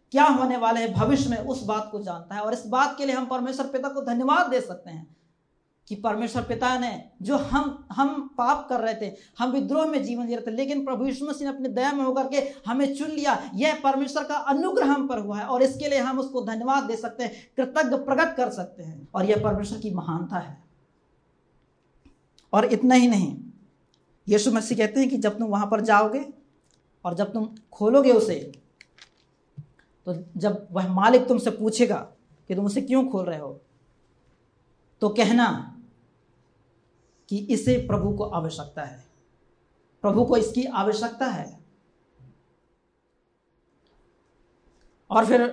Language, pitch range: Hindi, 205-265 Hz